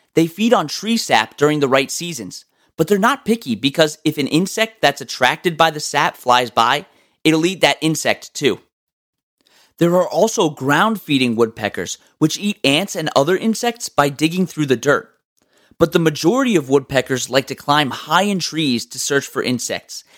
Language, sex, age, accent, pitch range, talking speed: English, male, 30-49, American, 145-195 Hz, 180 wpm